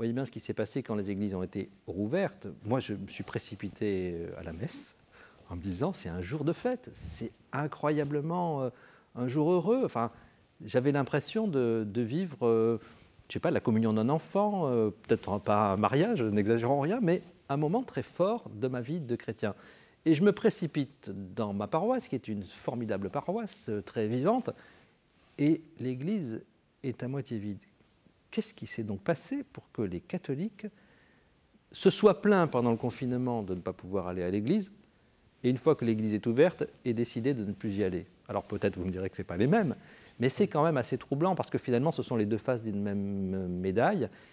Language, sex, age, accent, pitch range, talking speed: French, male, 50-69, French, 100-145 Hz, 200 wpm